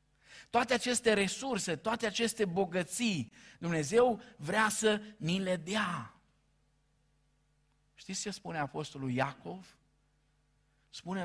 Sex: male